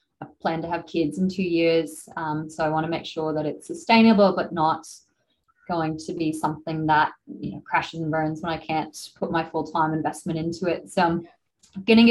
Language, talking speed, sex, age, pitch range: English, 210 wpm, female, 20-39, 155-175 Hz